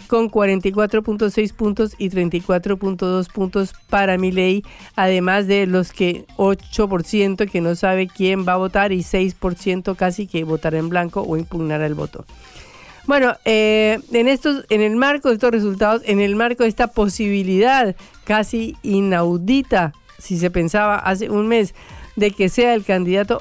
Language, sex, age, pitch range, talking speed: Spanish, female, 50-69, 185-225 Hz, 155 wpm